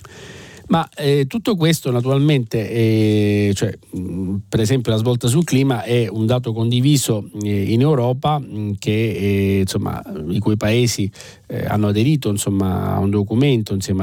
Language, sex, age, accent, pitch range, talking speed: Italian, male, 40-59, native, 110-135 Hz, 145 wpm